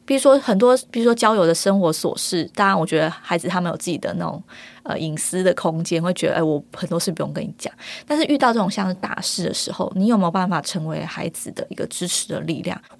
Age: 20-39